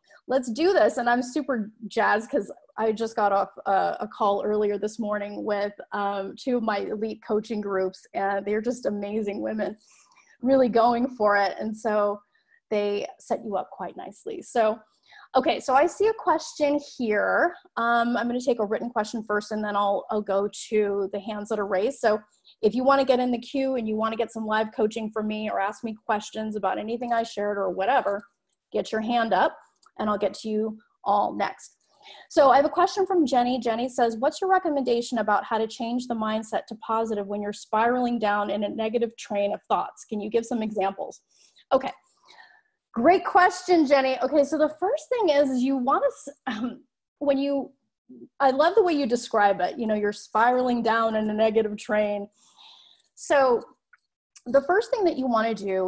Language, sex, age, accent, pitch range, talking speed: English, female, 20-39, American, 210-265 Hz, 200 wpm